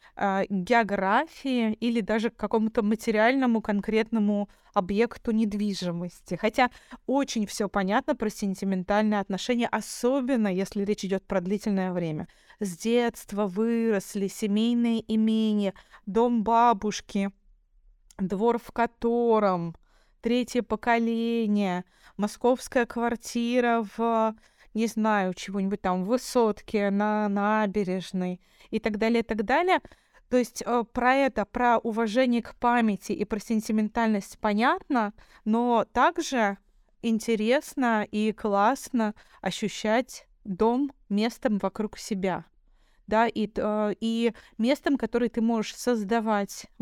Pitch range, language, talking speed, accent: 205-235 Hz, Russian, 110 wpm, native